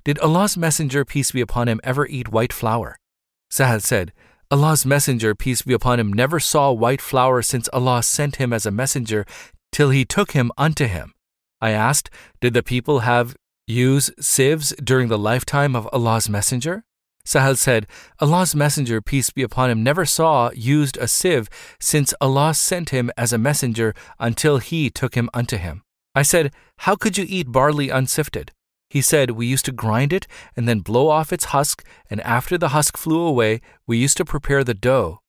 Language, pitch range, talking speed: English, 115-145 Hz, 185 wpm